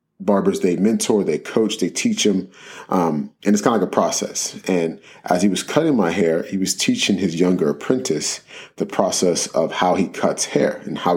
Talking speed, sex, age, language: 205 wpm, male, 30-49, English